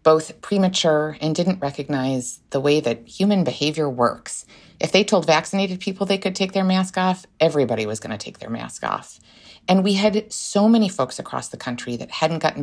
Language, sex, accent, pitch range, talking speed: English, female, American, 135-185 Hz, 200 wpm